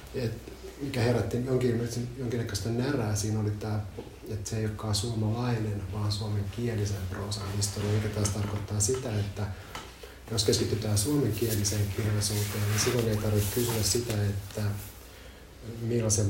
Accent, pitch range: native, 95-105 Hz